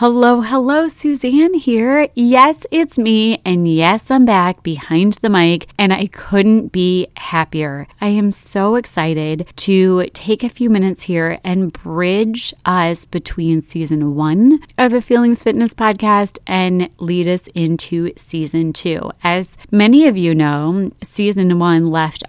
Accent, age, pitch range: American, 30-49, 170-205 Hz